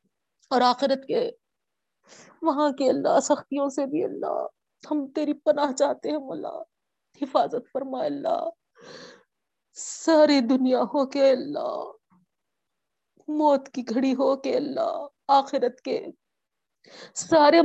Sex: female